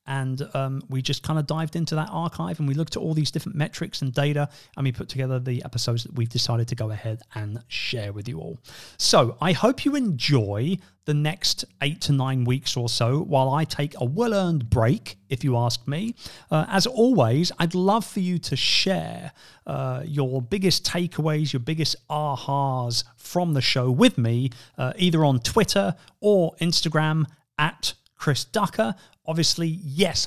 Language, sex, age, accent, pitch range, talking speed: English, male, 40-59, British, 120-175 Hz, 185 wpm